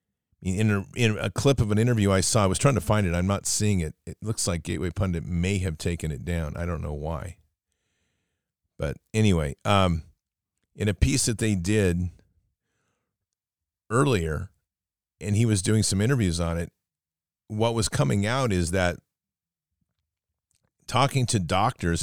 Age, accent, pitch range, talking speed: 40-59, American, 90-110 Hz, 165 wpm